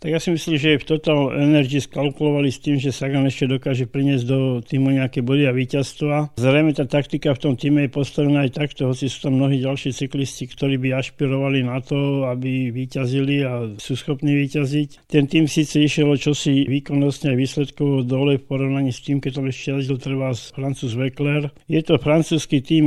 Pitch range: 135-145 Hz